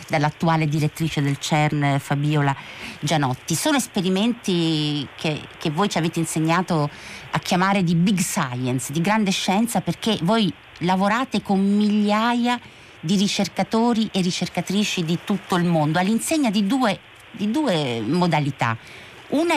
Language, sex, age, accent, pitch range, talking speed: Italian, female, 50-69, native, 155-200 Hz, 130 wpm